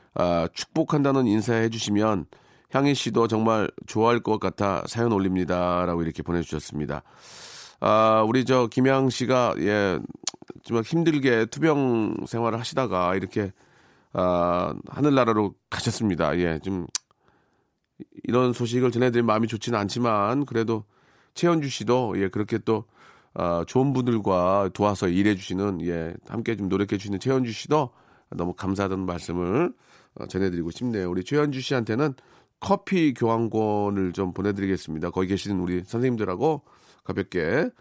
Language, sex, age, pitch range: Korean, male, 40-59, 95-125 Hz